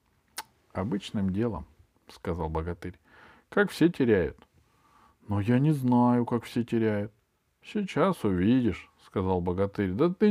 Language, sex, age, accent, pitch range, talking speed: Russian, male, 50-69, native, 90-125 Hz, 150 wpm